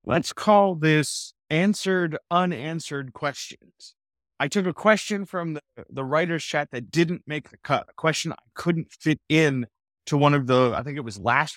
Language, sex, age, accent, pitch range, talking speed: English, male, 30-49, American, 135-180 Hz, 180 wpm